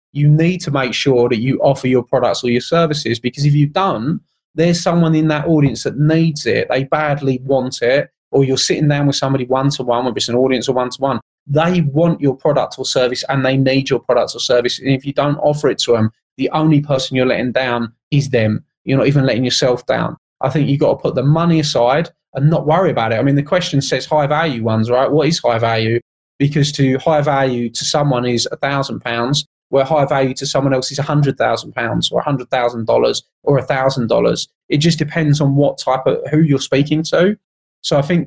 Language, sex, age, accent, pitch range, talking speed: English, male, 20-39, British, 125-150 Hz, 215 wpm